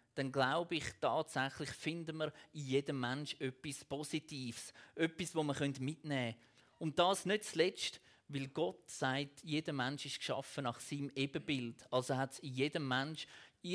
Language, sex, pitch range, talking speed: German, male, 130-175 Hz, 155 wpm